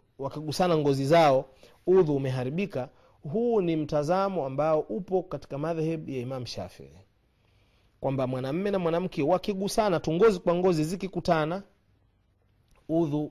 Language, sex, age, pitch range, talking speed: Swahili, male, 30-49, 135-190 Hz, 115 wpm